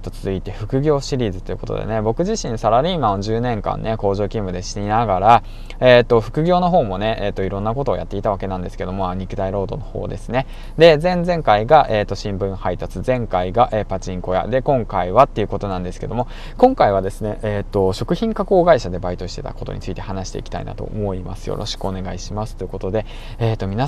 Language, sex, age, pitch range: Japanese, male, 20-39, 95-115 Hz